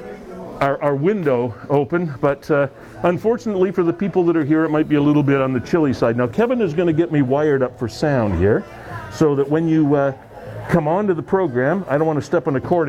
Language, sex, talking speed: English, male, 245 wpm